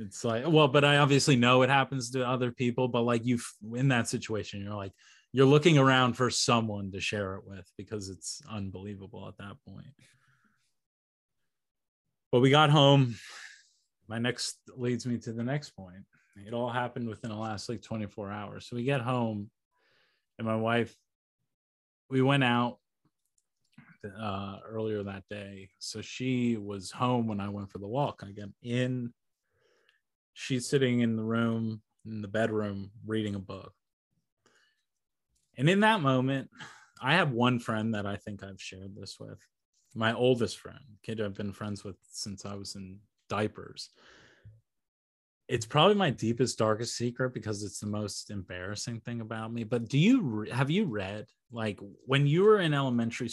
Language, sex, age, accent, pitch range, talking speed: English, male, 20-39, American, 105-125 Hz, 165 wpm